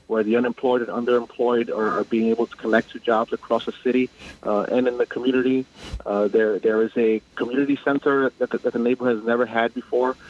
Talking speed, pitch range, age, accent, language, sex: 215 wpm, 115-135 Hz, 30-49, American, English, male